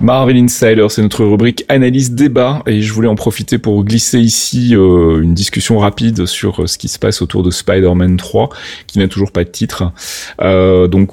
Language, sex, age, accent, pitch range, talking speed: French, male, 30-49, French, 85-105 Hz, 195 wpm